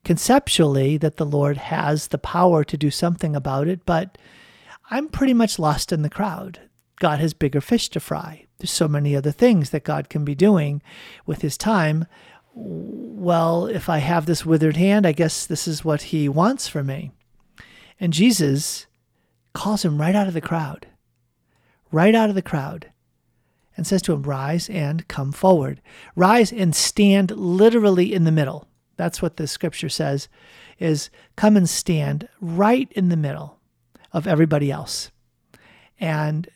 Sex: male